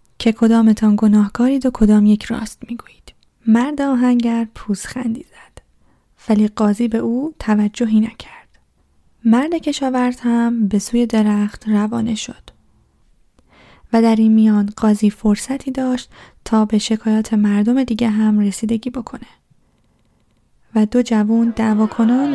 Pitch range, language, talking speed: 215-245 Hz, Persian, 125 wpm